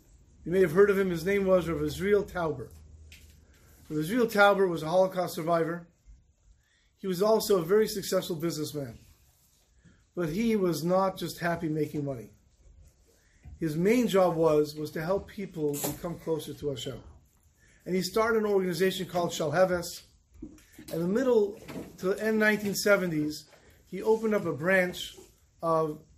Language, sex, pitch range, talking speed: English, male, 145-195 Hz, 150 wpm